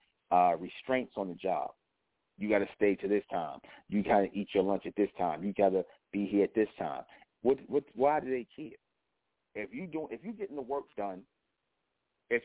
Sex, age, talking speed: male, 40-59, 220 wpm